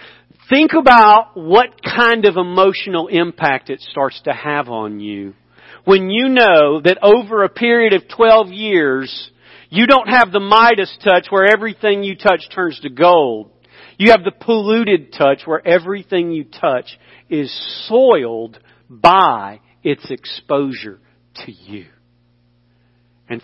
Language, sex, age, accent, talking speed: English, male, 50-69, American, 135 wpm